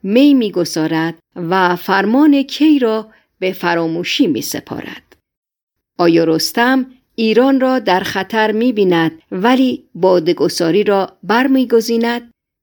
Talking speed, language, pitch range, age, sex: 105 wpm, Persian, 170-245 Hz, 50-69, female